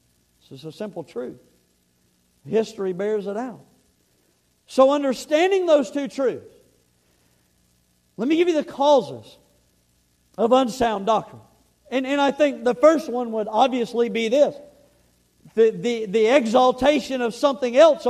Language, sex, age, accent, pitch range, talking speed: English, male, 50-69, American, 215-290 Hz, 130 wpm